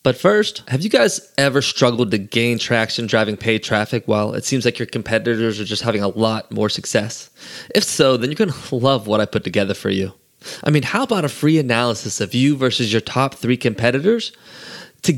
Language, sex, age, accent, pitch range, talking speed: English, male, 20-39, American, 115-155 Hz, 215 wpm